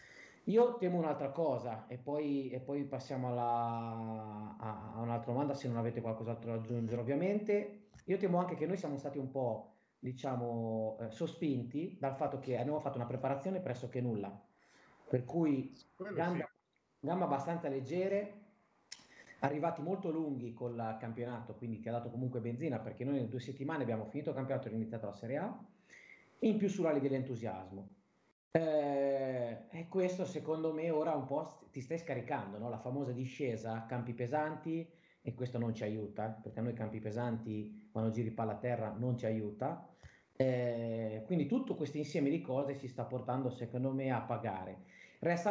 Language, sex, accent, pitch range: Italian, male, native, 115-155 Hz